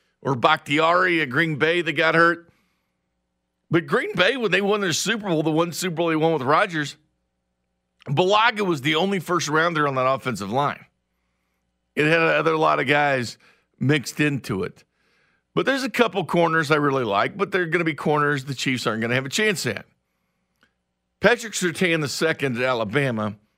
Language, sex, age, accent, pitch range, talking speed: English, male, 50-69, American, 120-165 Hz, 185 wpm